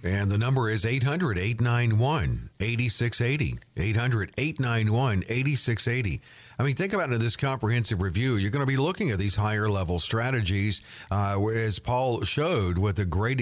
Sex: male